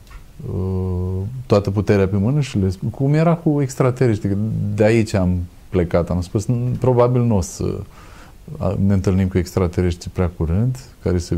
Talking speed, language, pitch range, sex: 155 wpm, Romanian, 95-115 Hz, male